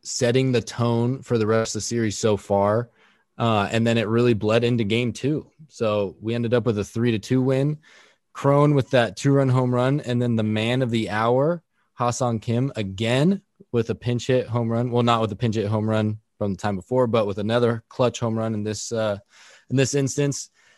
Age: 20-39